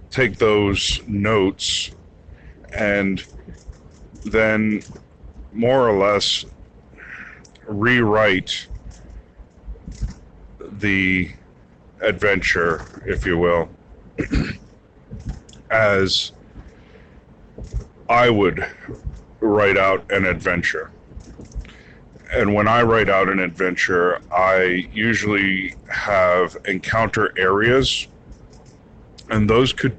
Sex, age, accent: male, 40-59, American